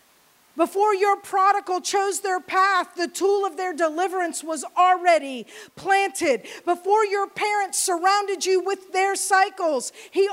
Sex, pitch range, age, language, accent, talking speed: female, 305-385 Hz, 40-59, English, American, 135 wpm